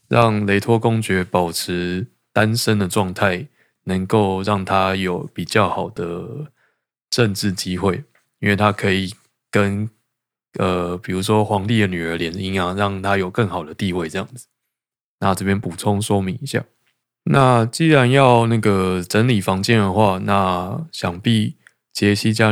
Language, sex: Chinese, male